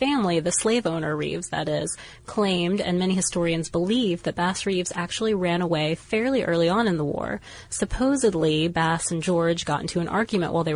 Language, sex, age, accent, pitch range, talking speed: English, female, 30-49, American, 165-205 Hz, 190 wpm